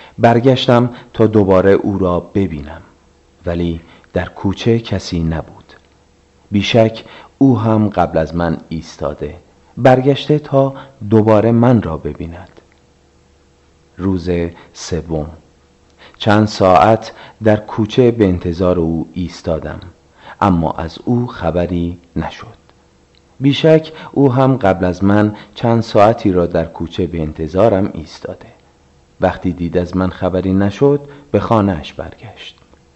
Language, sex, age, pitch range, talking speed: Persian, male, 40-59, 80-110 Hz, 115 wpm